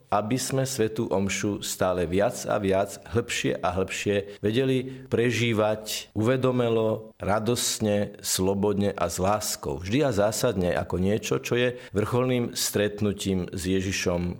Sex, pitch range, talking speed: male, 100-125 Hz, 125 wpm